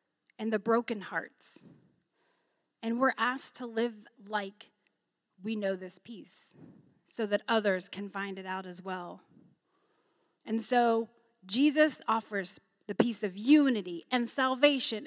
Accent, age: American, 30-49